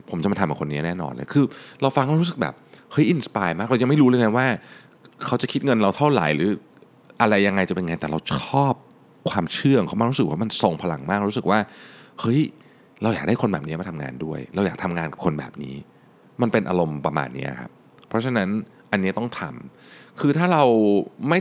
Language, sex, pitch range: Thai, male, 80-130 Hz